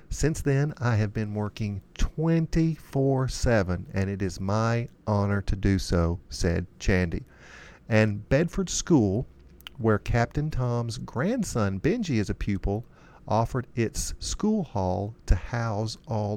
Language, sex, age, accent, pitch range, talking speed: English, male, 50-69, American, 100-130 Hz, 130 wpm